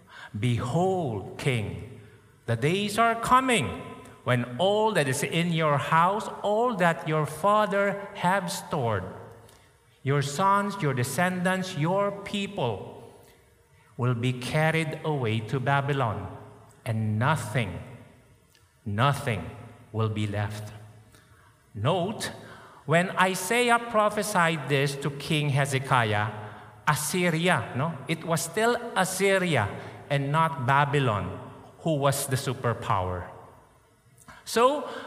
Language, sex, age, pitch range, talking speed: English, male, 50-69, 125-185 Hz, 100 wpm